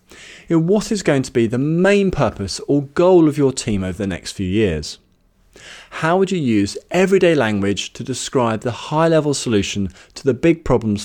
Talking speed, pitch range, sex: 180 wpm, 105-165 Hz, male